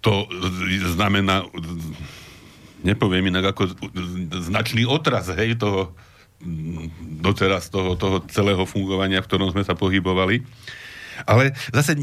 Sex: male